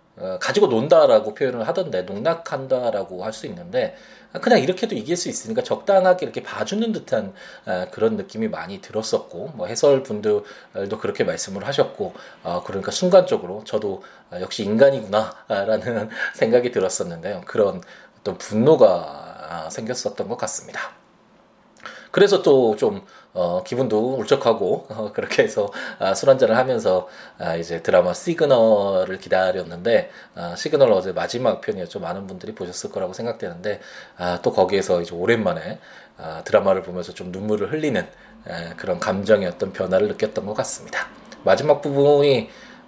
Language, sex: Korean, male